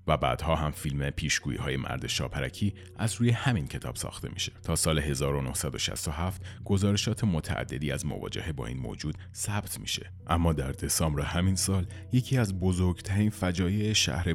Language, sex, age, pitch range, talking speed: Persian, male, 30-49, 75-95 Hz, 145 wpm